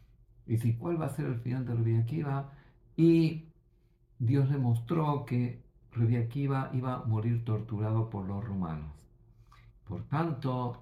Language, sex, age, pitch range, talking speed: Greek, male, 50-69, 115-140 Hz, 135 wpm